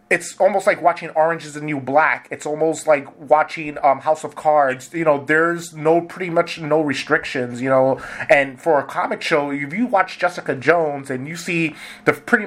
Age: 20-39